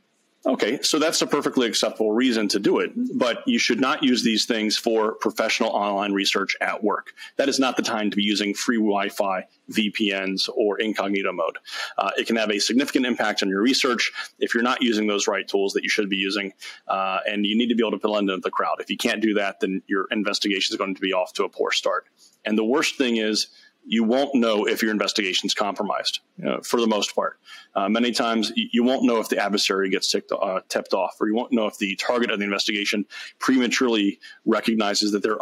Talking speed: 225 wpm